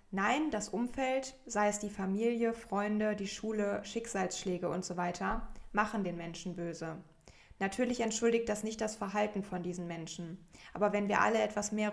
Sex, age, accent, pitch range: female, 20-39, German, 180-215 Hz